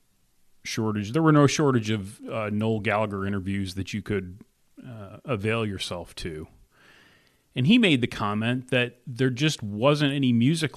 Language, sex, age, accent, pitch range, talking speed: English, male, 40-59, American, 95-125 Hz, 155 wpm